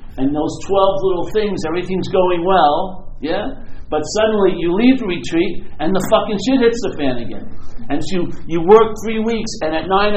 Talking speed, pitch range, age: 190 wpm, 135-205 Hz, 60-79